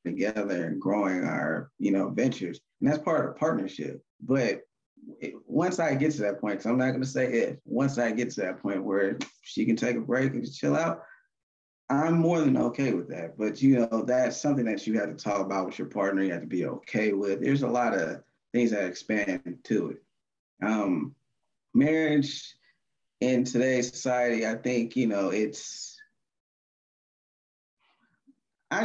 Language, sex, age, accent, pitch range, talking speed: English, male, 20-39, American, 115-155 Hz, 185 wpm